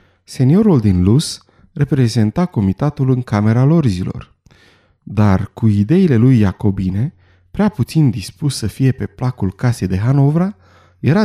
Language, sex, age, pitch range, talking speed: Romanian, male, 30-49, 100-140 Hz, 130 wpm